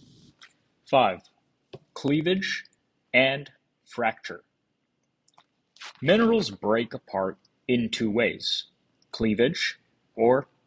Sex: male